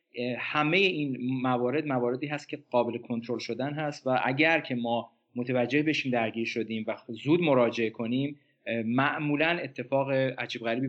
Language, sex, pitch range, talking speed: Persian, male, 115-155 Hz, 145 wpm